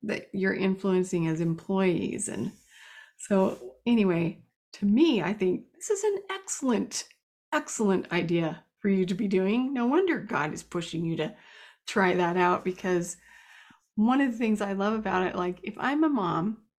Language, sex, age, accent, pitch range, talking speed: English, female, 30-49, American, 190-235 Hz, 170 wpm